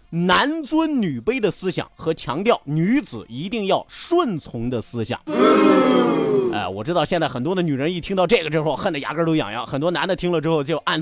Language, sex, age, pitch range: Chinese, male, 30-49, 150-225 Hz